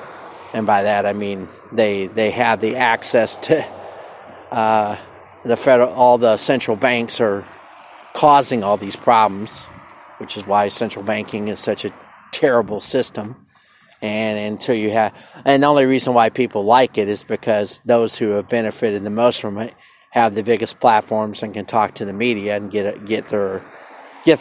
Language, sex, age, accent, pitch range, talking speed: English, male, 40-59, American, 105-125 Hz, 170 wpm